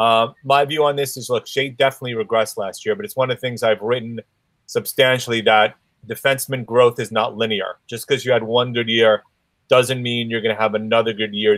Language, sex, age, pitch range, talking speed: English, male, 30-49, 115-130 Hz, 225 wpm